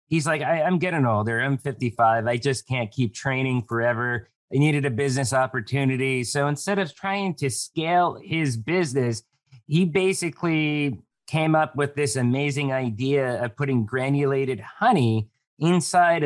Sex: male